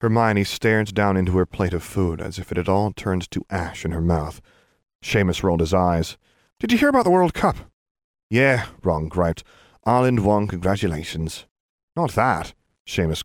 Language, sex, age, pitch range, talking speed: English, male, 30-49, 85-125 Hz, 175 wpm